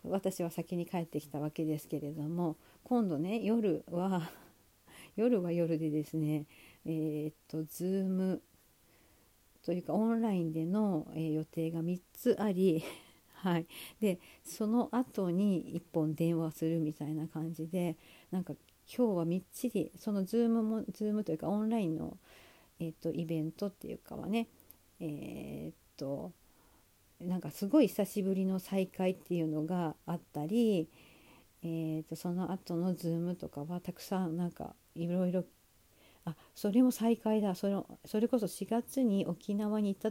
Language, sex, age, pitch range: Japanese, female, 50-69, 160-200 Hz